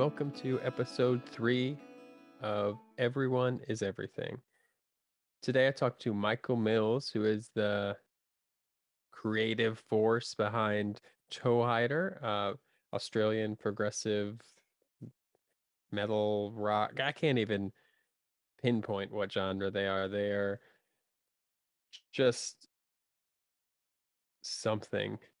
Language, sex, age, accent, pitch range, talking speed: English, male, 20-39, American, 100-120 Hz, 90 wpm